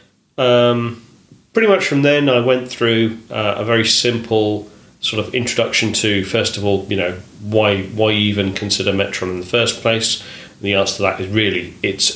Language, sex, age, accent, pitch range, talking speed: English, male, 30-49, British, 100-115 Hz, 190 wpm